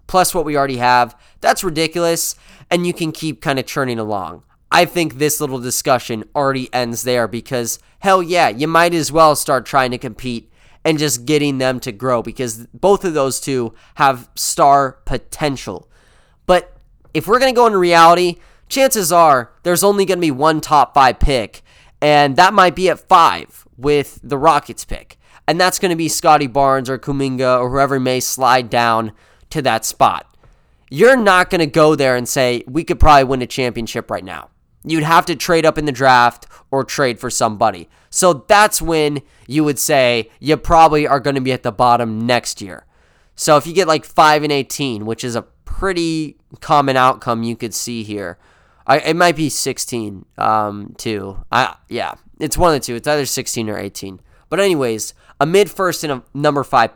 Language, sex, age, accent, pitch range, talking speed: English, male, 20-39, American, 120-160 Hz, 190 wpm